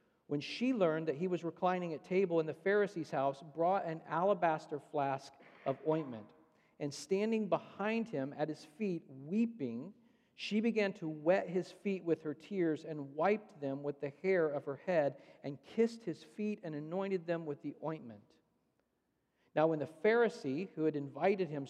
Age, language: 50-69, English